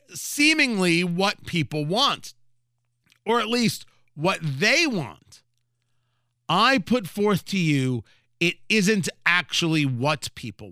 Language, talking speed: English, 110 wpm